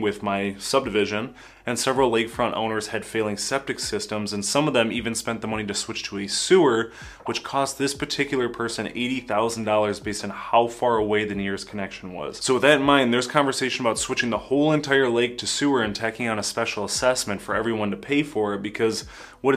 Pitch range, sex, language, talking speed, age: 105-125 Hz, male, English, 210 wpm, 20-39